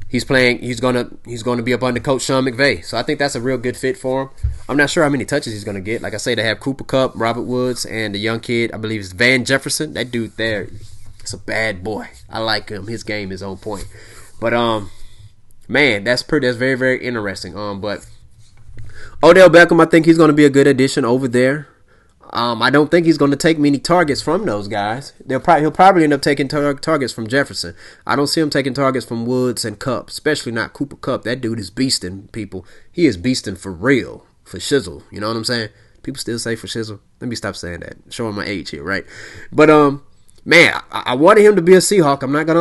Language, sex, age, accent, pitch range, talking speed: English, male, 20-39, American, 105-140 Hz, 240 wpm